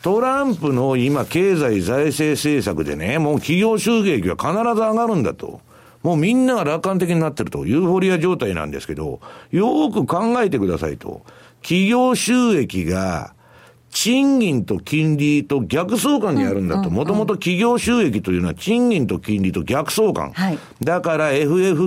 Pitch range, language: 115-180 Hz, Japanese